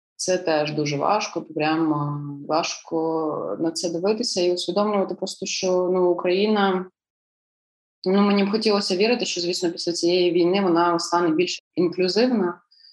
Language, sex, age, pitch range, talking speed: Ukrainian, female, 20-39, 170-190 Hz, 135 wpm